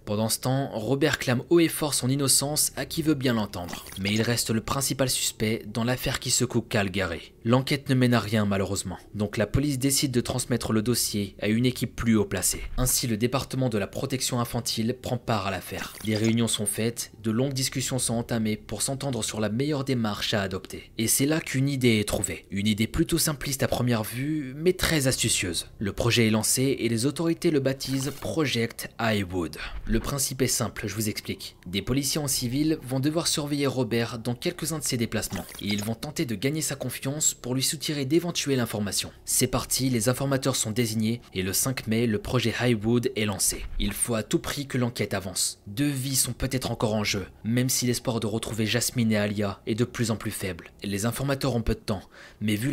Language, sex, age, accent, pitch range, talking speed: French, male, 20-39, French, 110-135 Hz, 215 wpm